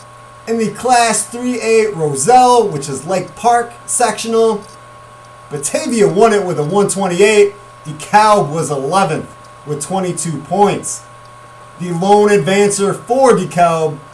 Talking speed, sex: 115 wpm, male